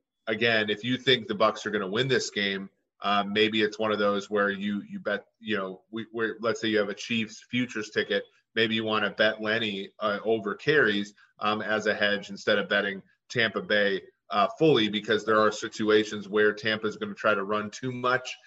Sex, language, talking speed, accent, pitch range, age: male, English, 220 wpm, American, 105-120 Hz, 30-49